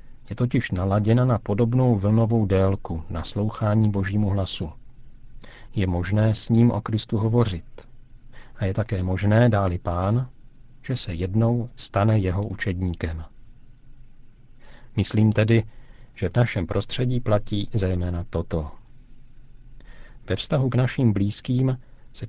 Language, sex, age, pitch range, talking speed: Czech, male, 50-69, 100-125 Hz, 120 wpm